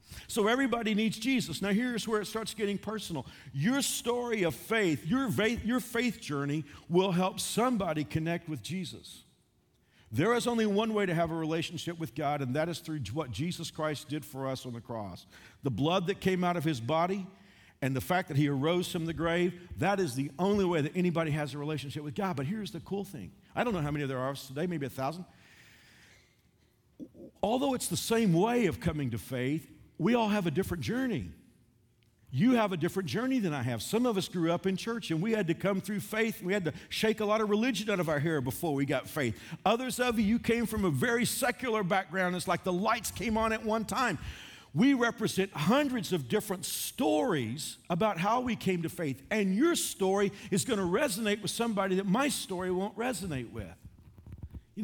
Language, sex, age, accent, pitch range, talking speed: English, male, 50-69, American, 150-215 Hz, 210 wpm